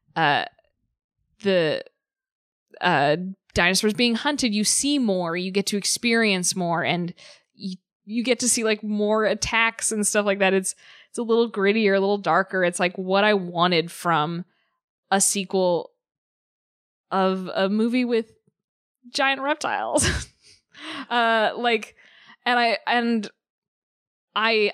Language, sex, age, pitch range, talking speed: English, female, 20-39, 190-240 Hz, 135 wpm